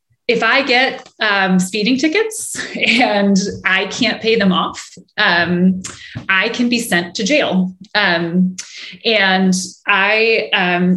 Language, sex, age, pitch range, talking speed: English, female, 20-39, 185-245 Hz, 125 wpm